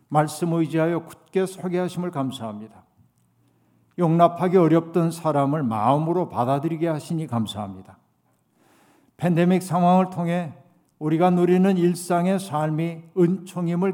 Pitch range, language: 130-175 Hz, Korean